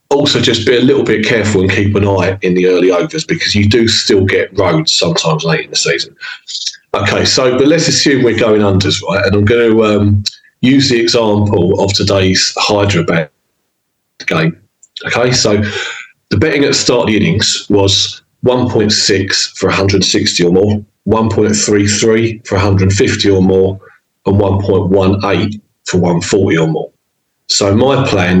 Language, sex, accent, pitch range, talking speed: English, male, British, 95-110 Hz, 160 wpm